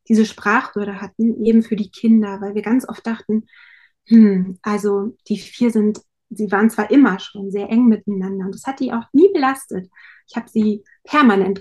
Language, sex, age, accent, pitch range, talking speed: German, female, 30-49, German, 200-225 Hz, 185 wpm